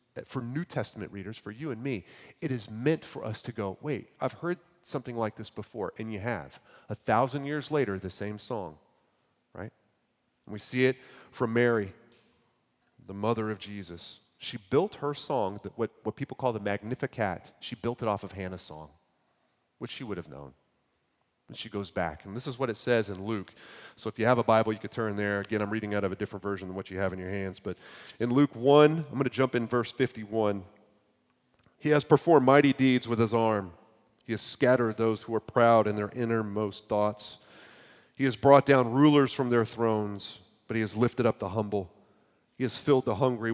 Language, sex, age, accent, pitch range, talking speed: English, male, 30-49, American, 105-125 Hz, 210 wpm